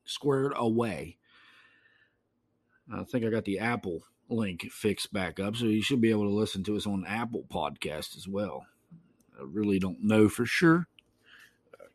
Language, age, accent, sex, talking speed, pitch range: English, 50-69, American, male, 165 wpm, 100-125 Hz